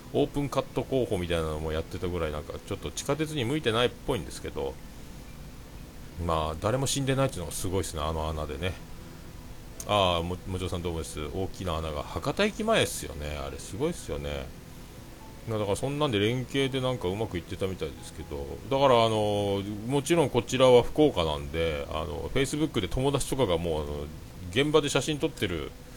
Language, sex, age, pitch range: Japanese, male, 40-59, 80-125 Hz